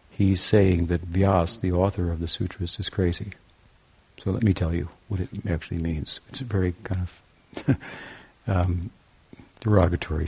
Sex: male